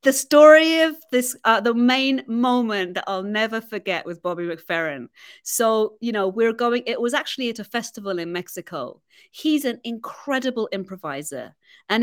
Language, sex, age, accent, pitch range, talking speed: English, female, 30-49, British, 180-240 Hz, 165 wpm